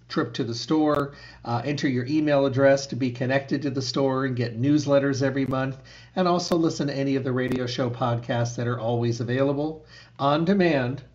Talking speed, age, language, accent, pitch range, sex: 195 wpm, 50-69, English, American, 120-140 Hz, male